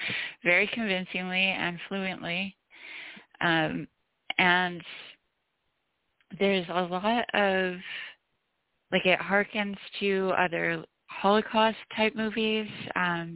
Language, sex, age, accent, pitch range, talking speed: English, female, 30-49, American, 155-195 Hz, 85 wpm